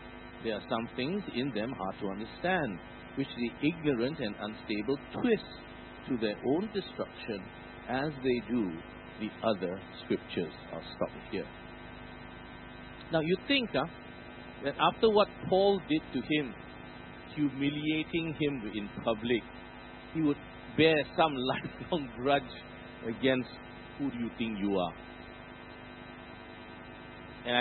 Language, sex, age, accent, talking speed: English, male, 50-69, Malaysian, 120 wpm